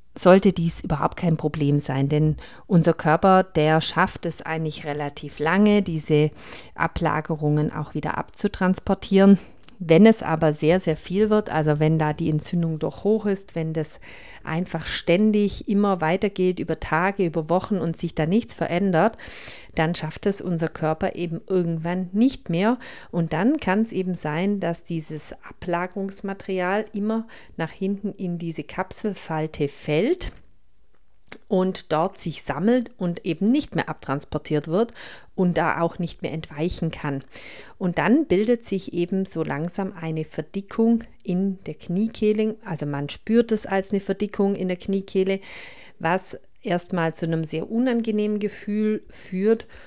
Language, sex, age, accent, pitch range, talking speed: German, female, 40-59, German, 160-200 Hz, 145 wpm